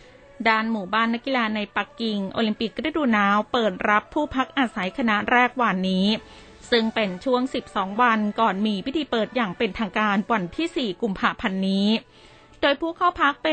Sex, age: female, 20-39